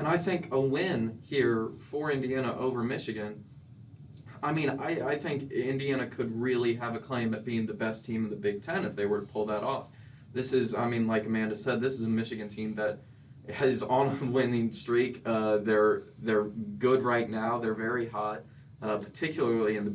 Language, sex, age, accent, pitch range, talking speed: English, male, 20-39, American, 110-135 Hz, 205 wpm